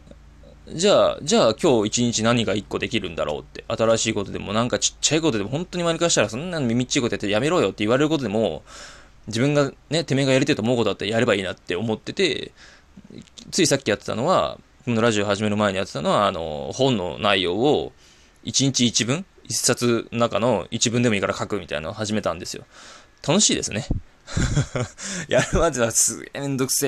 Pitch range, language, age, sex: 105-135 Hz, Japanese, 20-39, male